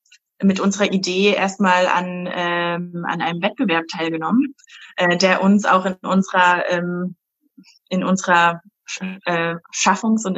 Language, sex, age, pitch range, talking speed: German, female, 20-39, 170-195 Hz, 125 wpm